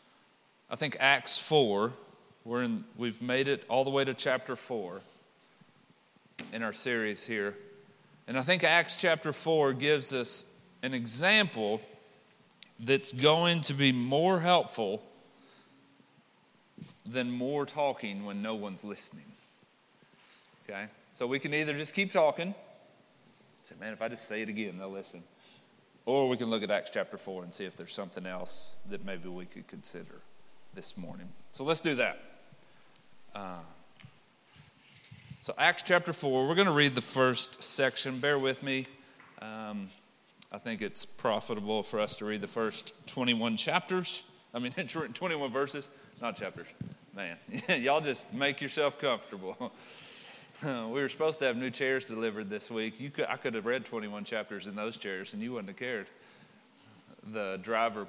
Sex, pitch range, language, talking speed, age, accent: male, 110-155 Hz, English, 160 wpm, 40-59, American